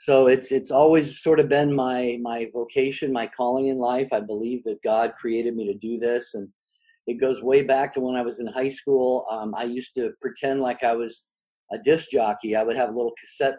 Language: English